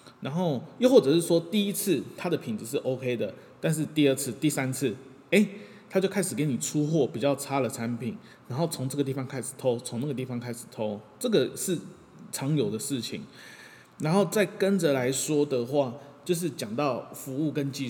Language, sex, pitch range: Chinese, male, 125-180 Hz